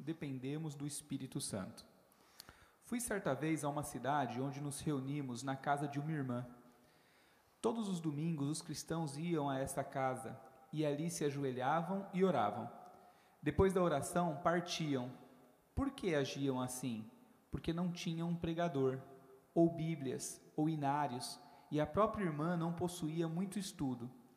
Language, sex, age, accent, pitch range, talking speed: Portuguese, male, 40-59, Brazilian, 140-185 Hz, 145 wpm